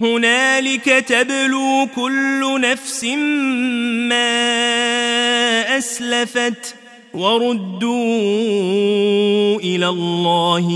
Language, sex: Arabic, male